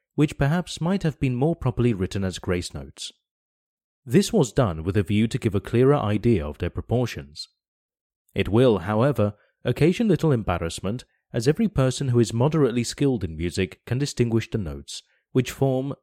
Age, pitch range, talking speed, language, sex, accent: 30-49, 95-130 Hz, 170 wpm, English, male, British